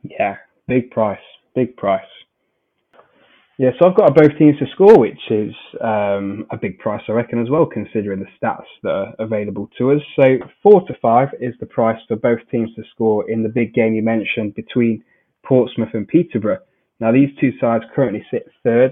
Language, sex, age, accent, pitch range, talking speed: English, male, 20-39, British, 110-125 Hz, 190 wpm